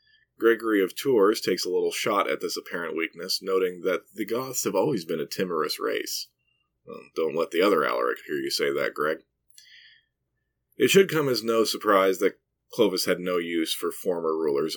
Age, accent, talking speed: 30-49, American, 185 wpm